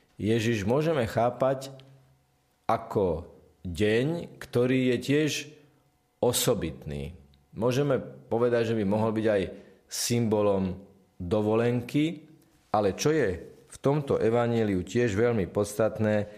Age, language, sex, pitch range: 40-59, Slovak, male, 95-120 Hz